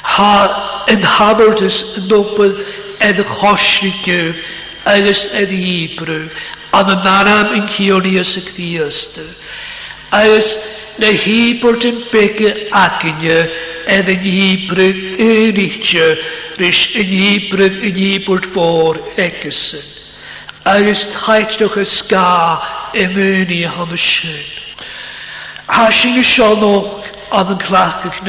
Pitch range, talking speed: 180-215 Hz, 70 wpm